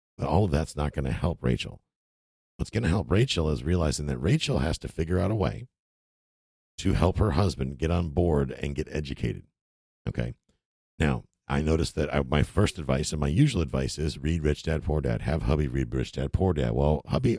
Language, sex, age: English, male, 60-79